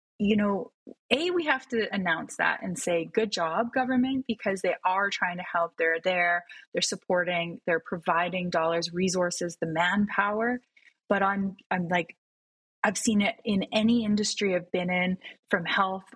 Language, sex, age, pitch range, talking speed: English, female, 20-39, 175-200 Hz, 165 wpm